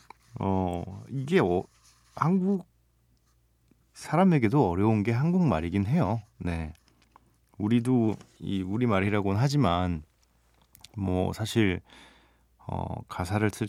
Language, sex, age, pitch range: Korean, male, 40-59, 90-125 Hz